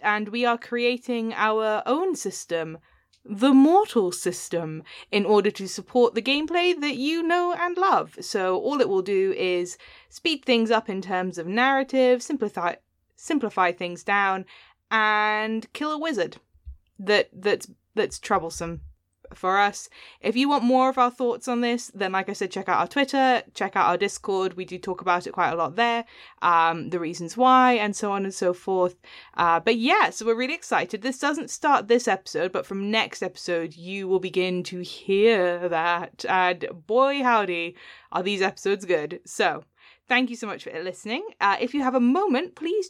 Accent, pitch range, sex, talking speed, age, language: British, 190-265 Hz, female, 185 wpm, 10-29, English